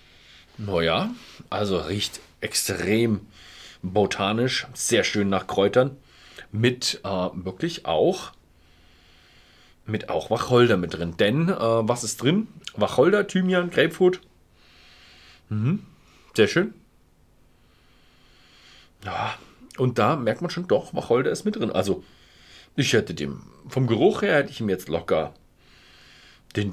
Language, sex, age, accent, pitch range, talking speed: German, male, 40-59, German, 85-125 Hz, 120 wpm